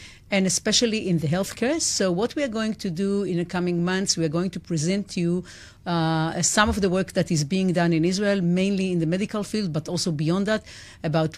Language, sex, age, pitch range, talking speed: English, female, 50-69, 170-200 Hz, 225 wpm